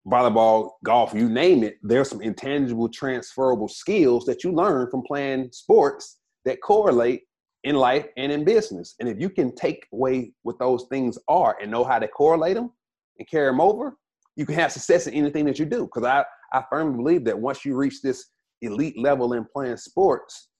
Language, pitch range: English, 115-160 Hz